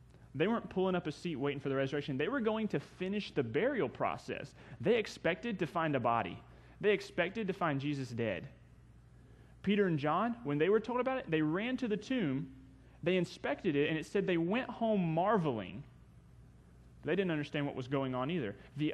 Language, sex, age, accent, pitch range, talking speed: English, male, 30-49, American, 135-190 Hz, 200 wpm